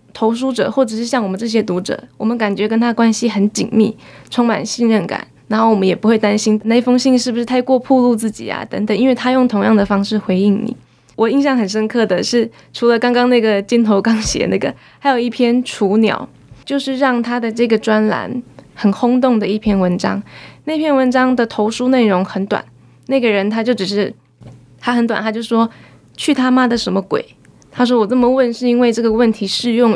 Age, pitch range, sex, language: 20-39, 210-245 Hz, female, Chinese